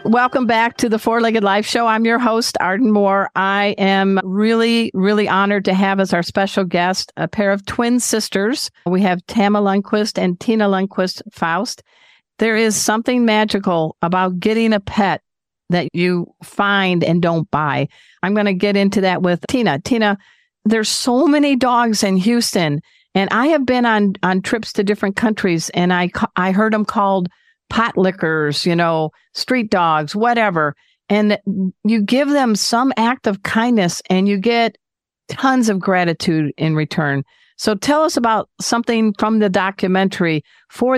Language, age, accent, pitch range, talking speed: English, 50-69, American, 175-225 Hz, 165 wpm